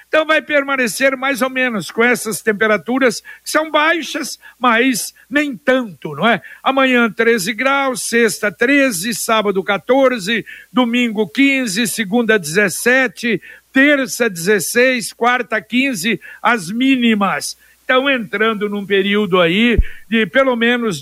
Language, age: Portuguese, 60-79